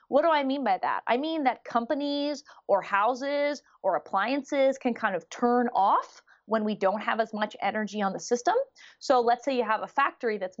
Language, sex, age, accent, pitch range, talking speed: English, female, 20-39, American, 200-285 Hz, 210 wpm